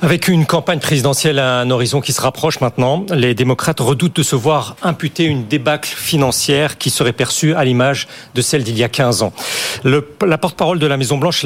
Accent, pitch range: French, 145-190 Hz